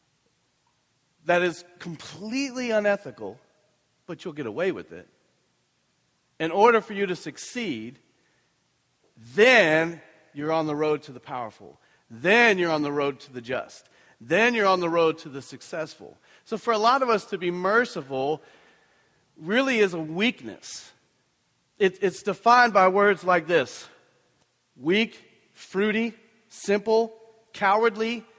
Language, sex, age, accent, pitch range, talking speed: English, male, 40-59, American, 155-215 Hz, 135 wpm